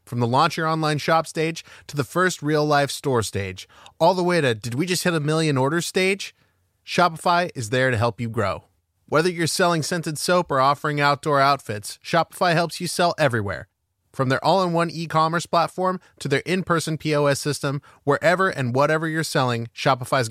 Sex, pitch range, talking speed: male, 120-160 Hz, 185 wpm